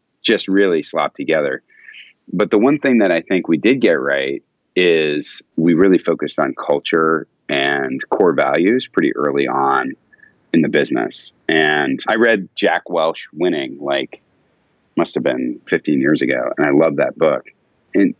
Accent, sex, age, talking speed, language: American, male, 30-49, 160 wpm, English